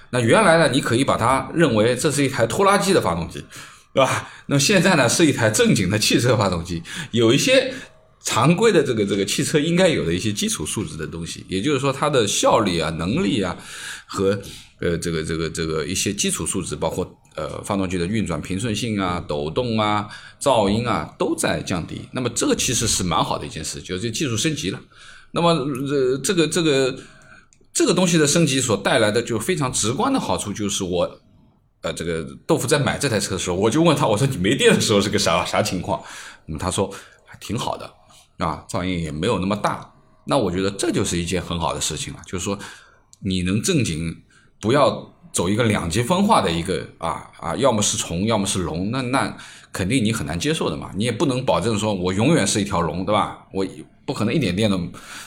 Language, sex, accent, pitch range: Chinese, male, native, 90-135 Hz